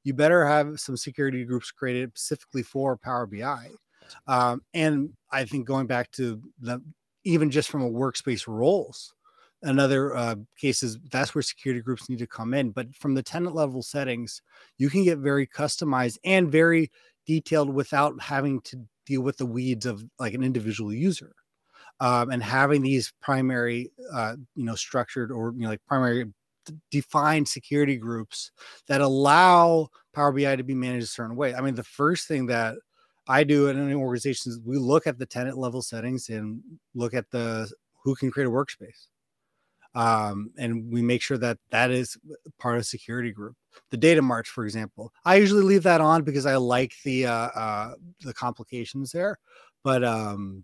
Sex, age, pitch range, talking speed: male, 30-49, 120-145 Hz, 175 wpm